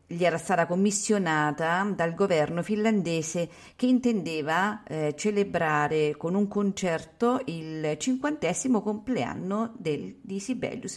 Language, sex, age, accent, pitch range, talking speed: Italian, female, 50-69, native, 155-220 Hz, 105 wpm